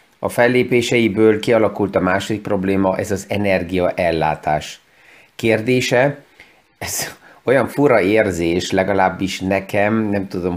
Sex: male